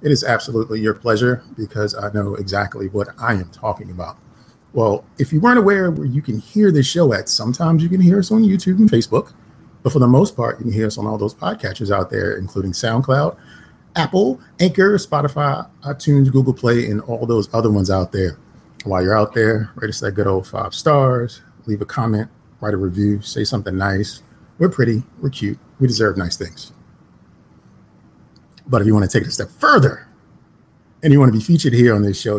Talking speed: 210 wpm